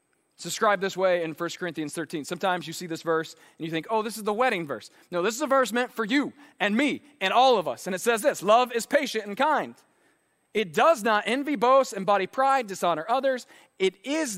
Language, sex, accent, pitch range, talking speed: English, male, American, 185-255 Hz, 230 wpm